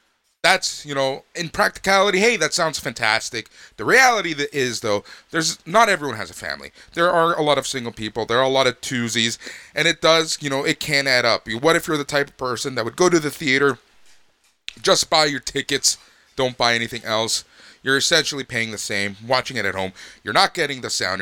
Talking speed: 220 wpm